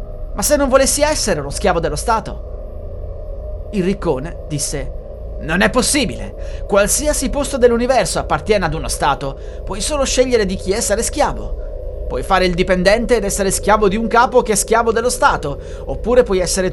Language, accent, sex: Italian, native, male